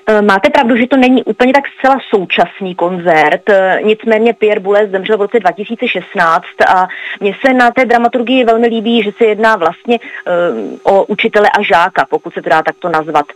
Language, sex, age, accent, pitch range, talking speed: Czech, female, 30-49, native, 180-220 Hz, 175 wpm